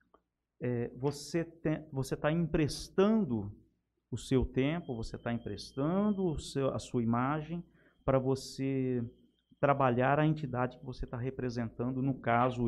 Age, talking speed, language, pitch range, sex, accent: 50-69, 130 wpm, Portuguese, 125-175 Hz, male, Brazilian